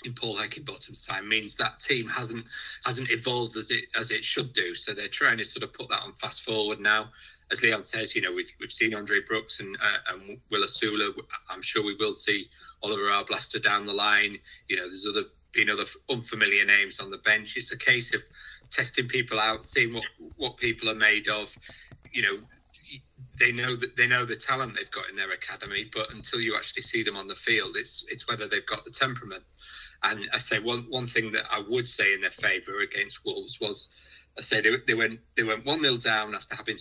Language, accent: English, British